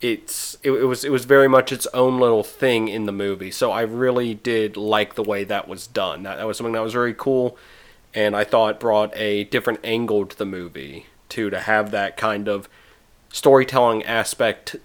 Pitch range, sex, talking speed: 100-125 Hz, male, 215 wpm